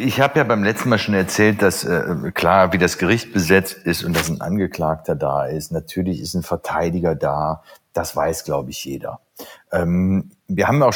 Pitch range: 85-105 Hz